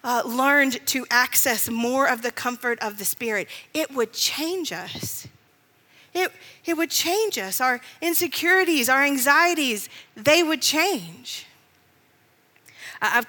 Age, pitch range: 40-59, 210-265 Hz